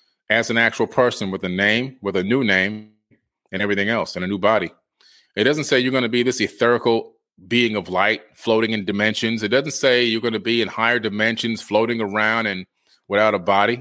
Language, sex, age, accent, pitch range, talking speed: English, male, 30-49, American, 105-125 Hz, 215 wpm